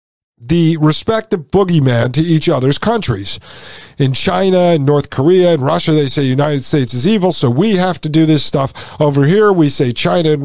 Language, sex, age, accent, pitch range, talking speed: English, male, 50-69, American, 135-185 Hz, 190 wpm